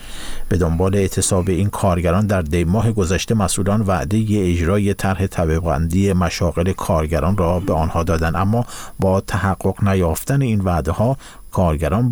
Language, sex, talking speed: Persian, male, 135 wpm